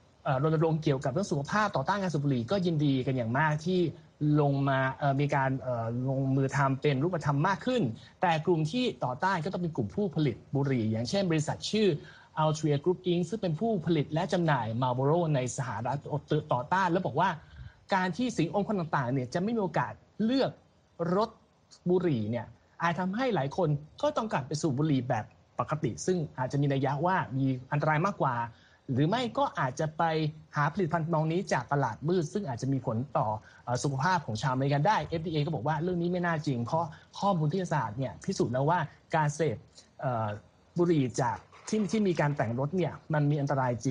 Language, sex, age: Thai, male, 20-39